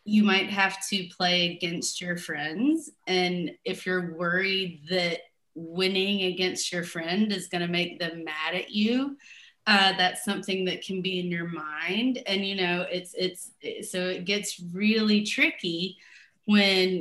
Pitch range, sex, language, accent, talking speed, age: 175-210 Hz, female, English, American, 160 wpm, 20-39